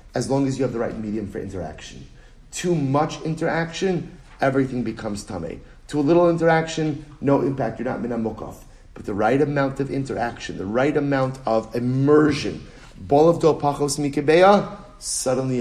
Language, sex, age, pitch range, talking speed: English, male, 40-59, 115-155 Hz, 155 wpm